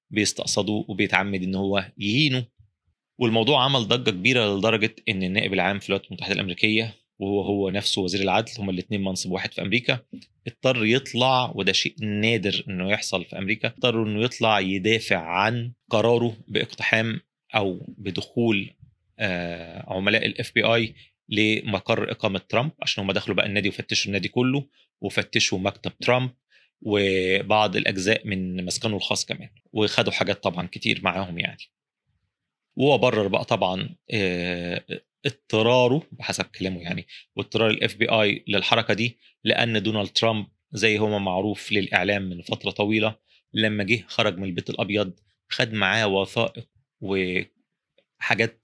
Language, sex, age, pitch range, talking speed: Arabic, male, 30-49, 95-115 Hz, 135 wpm